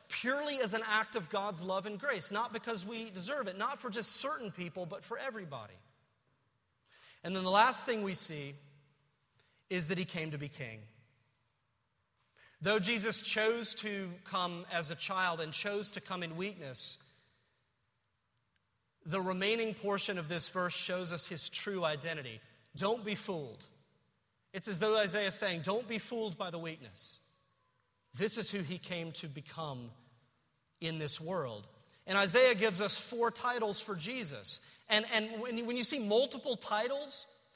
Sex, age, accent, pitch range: male, 30-49, American, 155-225 Hz